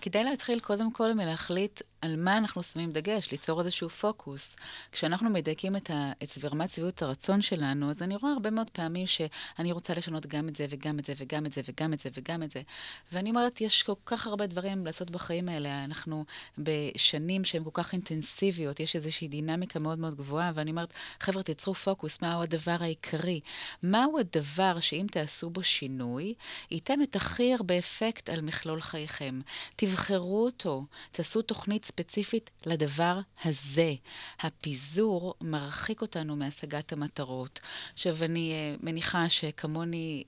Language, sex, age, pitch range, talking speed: Hebrew, female, 30-49, 150-190 Hz, 160 wpm